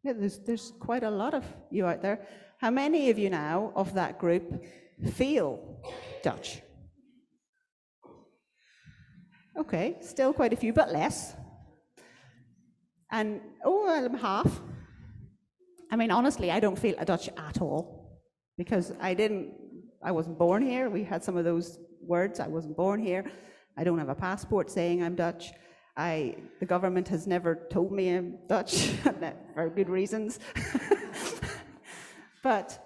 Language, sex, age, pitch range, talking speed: English, female, 40-59, 180-235 Hz, 145 wpm